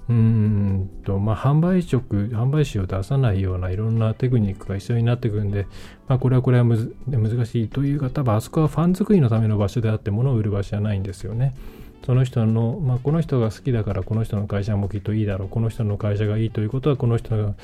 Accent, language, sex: native, Japanese, male